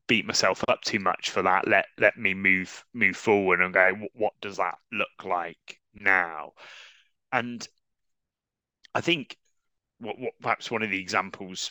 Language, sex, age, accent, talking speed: English, male, 30-49, British, 160 wpm